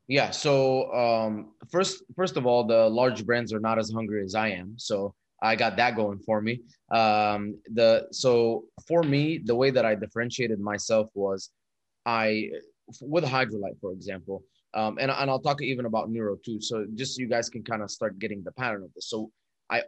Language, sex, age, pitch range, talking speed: English, male, 20-39, 105-130 Hz, 200 wpm